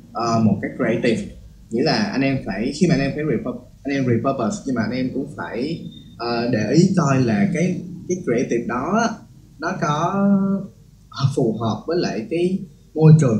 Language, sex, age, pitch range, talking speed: Vietnamese, male, 20-39, 115-180 Hz, 190 wpm